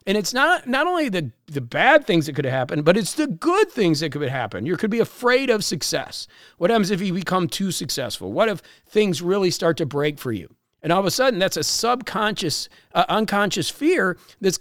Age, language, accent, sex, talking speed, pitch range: 40-59, English, American, male, 220 wpm, 160-210 Hz